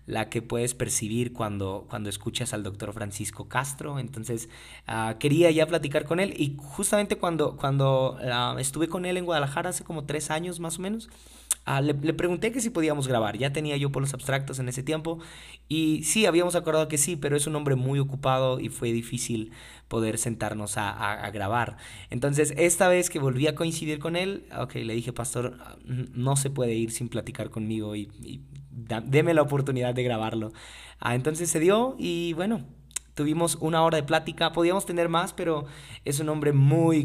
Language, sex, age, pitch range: Spanish, male, 20-39, 120-155 Hz